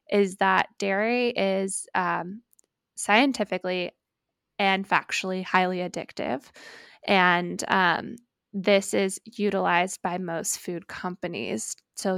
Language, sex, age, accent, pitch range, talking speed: English, female, 20-39, American, 180-210 Hz, 100 wpm